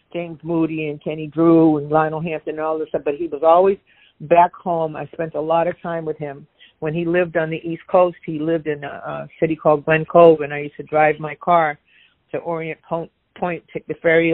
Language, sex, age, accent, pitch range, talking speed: English, female, 50-69, American, 155-180 Hz, 235 wpm